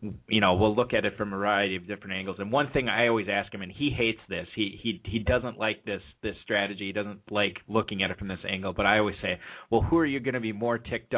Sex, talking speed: male, 285 wpm